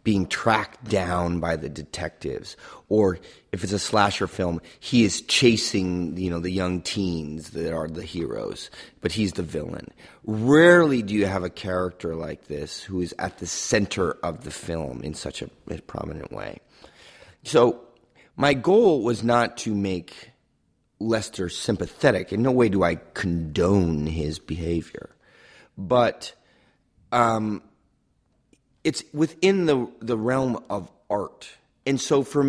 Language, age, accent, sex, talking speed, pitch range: English, 30-49, American, male, 145 wpm, 90-120 Hz